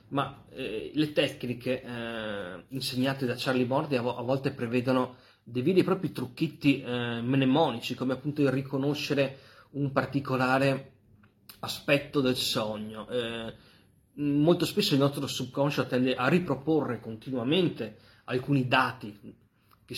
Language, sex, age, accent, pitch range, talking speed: Italian, male, 30-49, native, 115-135 Hz, 125 wpm